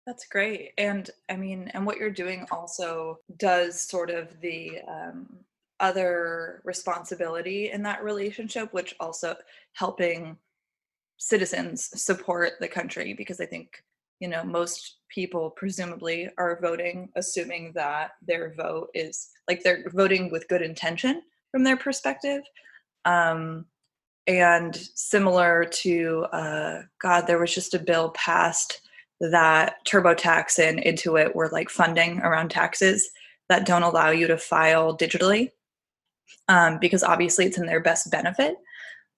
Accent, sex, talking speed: American, female, 135 wpm